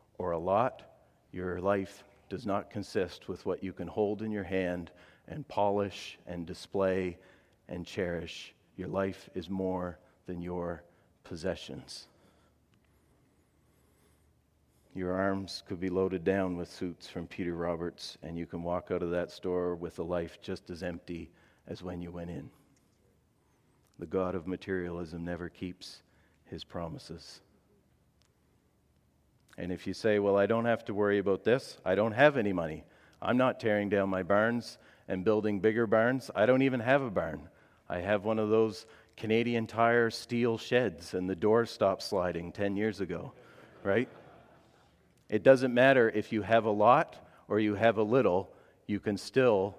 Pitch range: 90-105 Hz